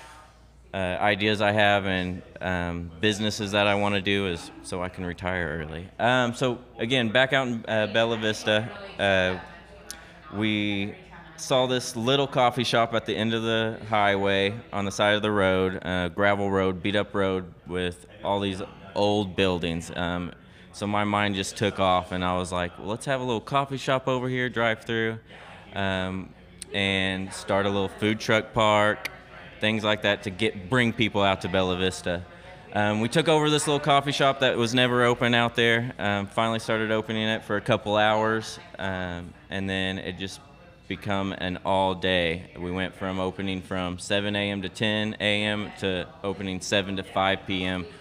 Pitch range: 95-115 Hz